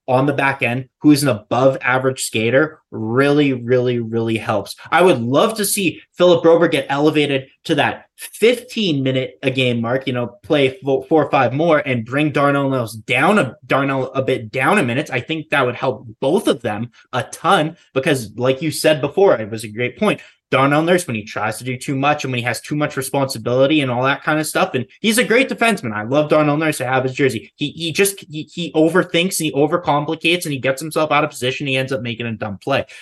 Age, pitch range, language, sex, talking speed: 20-39, 125-155 Hz, English, male, 230 wpm